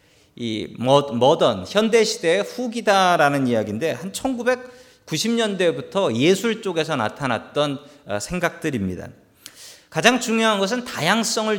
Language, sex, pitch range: Korean, male, 135-215 Hz